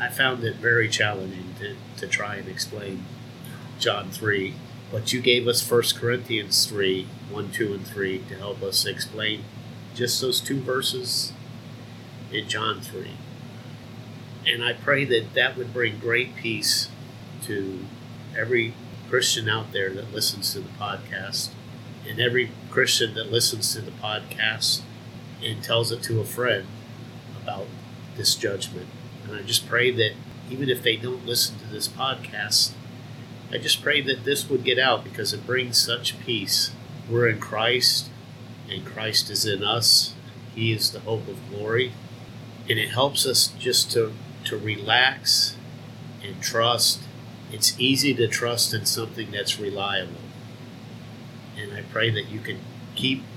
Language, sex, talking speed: English, male, 150 wpm